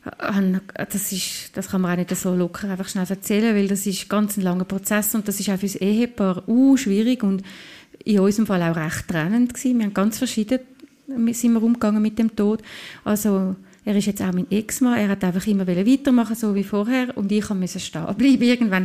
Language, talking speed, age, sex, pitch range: German, 215 wpm, 30-49, female, 195-235 Hz